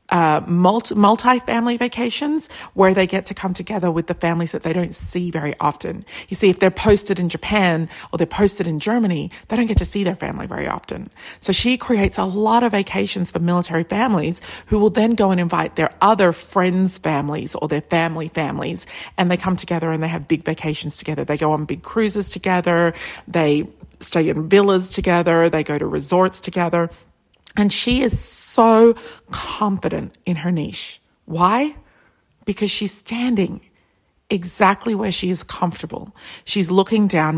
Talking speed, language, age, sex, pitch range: 175 wpm, English, 40-59, female, 170-210 Hz